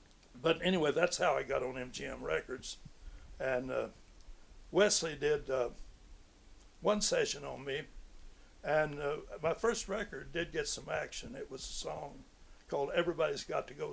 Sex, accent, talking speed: male, American, 155 wpm